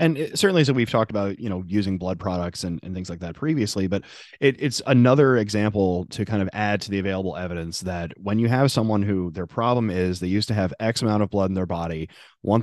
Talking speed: 250 wpm